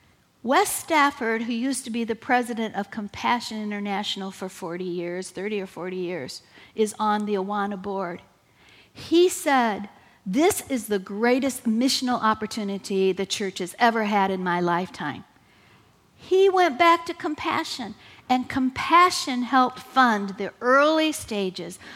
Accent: American